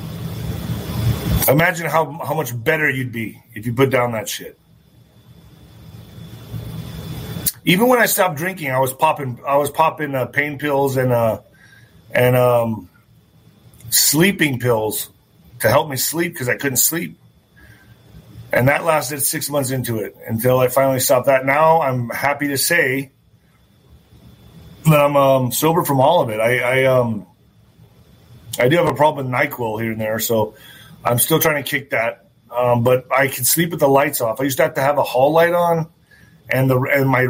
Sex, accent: male, American